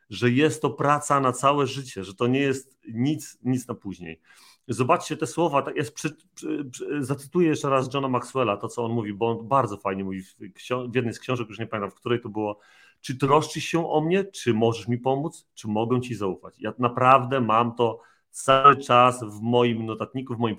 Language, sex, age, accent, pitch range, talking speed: Polish, male, 40-59, native, 115-145 Hz, 200 wpm